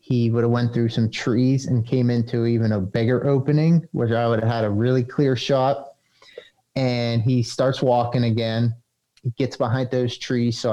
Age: 30-49